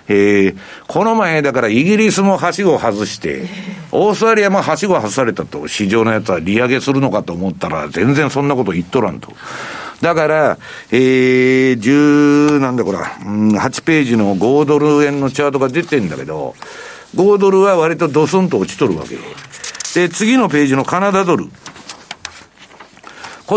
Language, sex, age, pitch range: Japanese, male, 60-79, 140-215 Hz